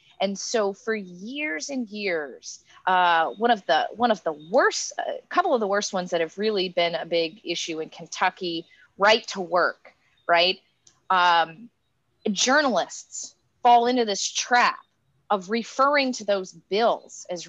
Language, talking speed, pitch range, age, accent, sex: English, 155 wpm, 185-265 Hz, 30-49, American, female